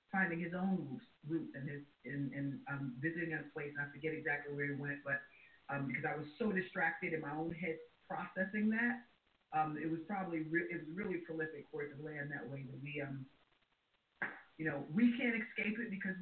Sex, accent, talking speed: female, American, 195 wpm